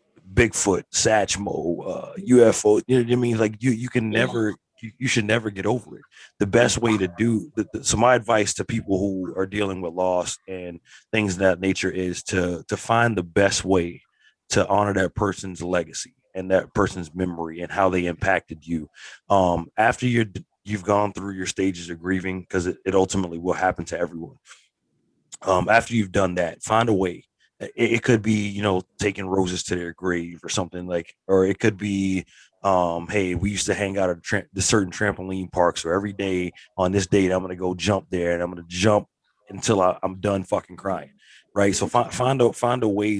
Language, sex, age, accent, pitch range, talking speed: English, male, 30-49, American, 90-105 Hz, 205 wpm